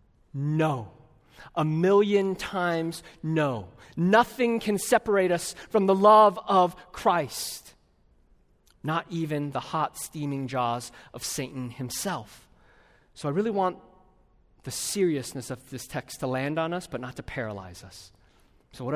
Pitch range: 115-180 Hz